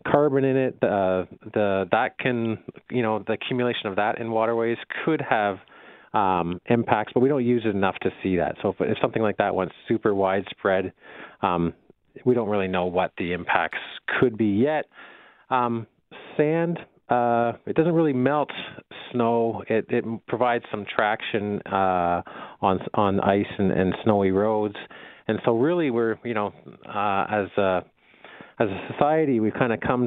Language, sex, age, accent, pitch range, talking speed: English, male, 30-49, American, 95-115 Hz, 170 wpm